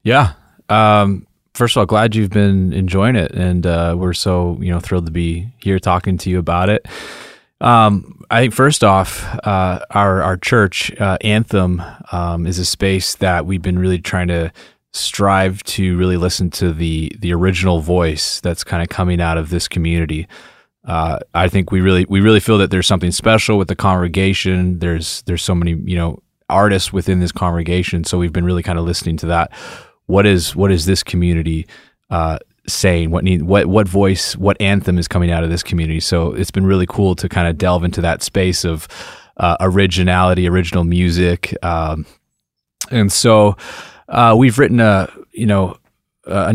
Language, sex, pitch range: English, male, 90-100 Hz